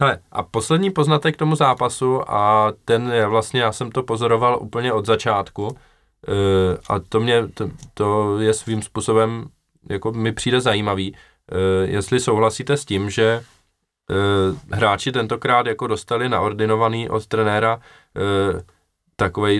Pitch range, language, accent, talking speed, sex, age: 100-120 Hz, Czech, native, 145 wpm, male, 20-39